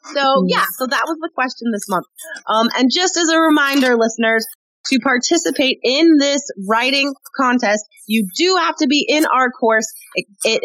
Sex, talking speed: female, 180 wpm